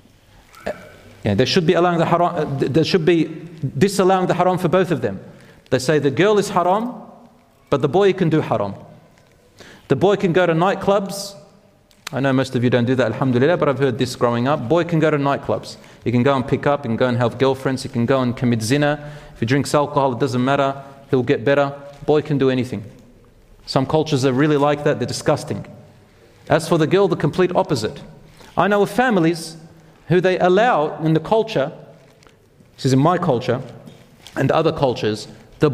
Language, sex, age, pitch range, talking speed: English, male, 30-49, 130-180 Hz, 195 wpm